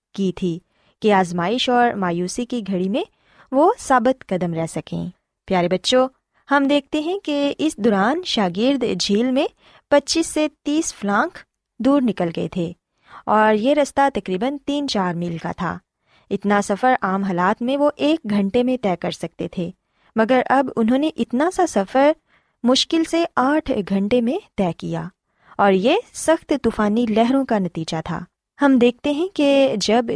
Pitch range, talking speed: 190-275 Hz, 165 wpm